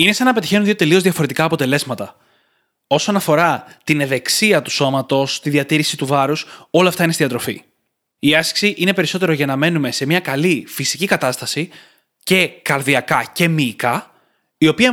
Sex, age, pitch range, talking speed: male, 20-39, 130-170 Hz, 165 wpm